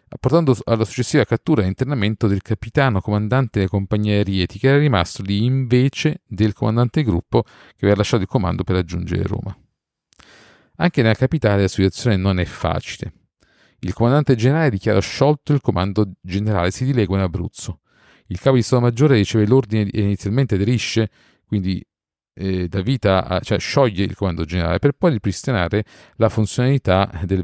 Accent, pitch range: native, 95-125 Hz